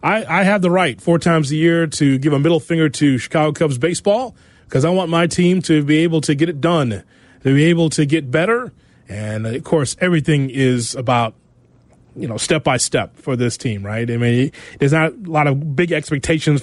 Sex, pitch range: male, 130-165 Hz